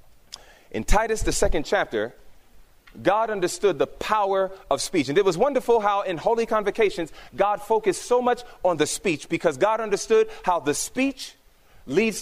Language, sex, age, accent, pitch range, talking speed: English, male, 30-49, American, 180-245 Hz, 160 wpm